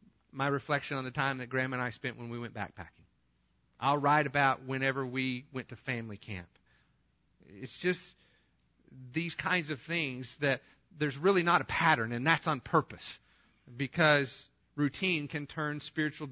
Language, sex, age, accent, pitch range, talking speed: English, male, 40-59, American, 120-165 Hz, 160 wpm